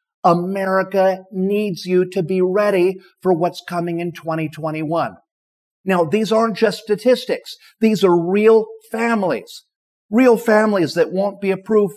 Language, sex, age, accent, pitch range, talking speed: English, male, 50-69, American, 165-205 Hz, 130 wpm